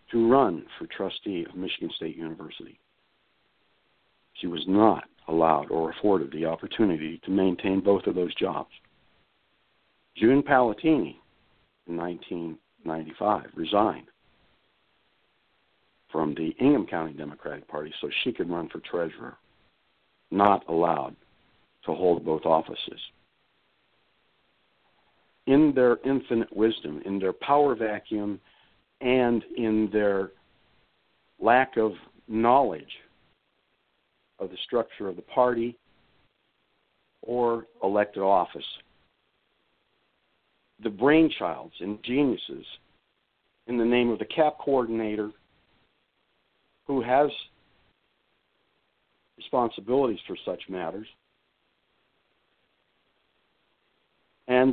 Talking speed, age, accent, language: 95 wpm, 60-79, American, English